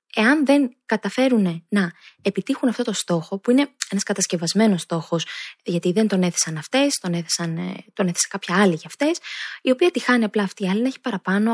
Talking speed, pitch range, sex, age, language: 195 wpm, 185-255 Hz, female, 20-39, Greek